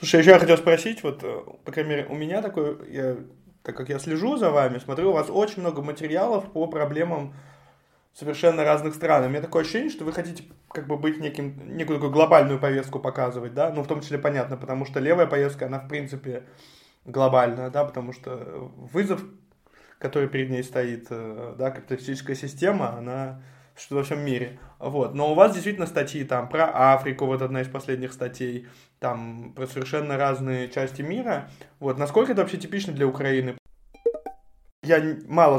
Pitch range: 130-160 Hz